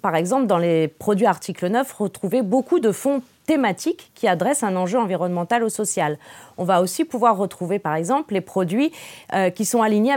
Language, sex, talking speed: French, female, 185 wpm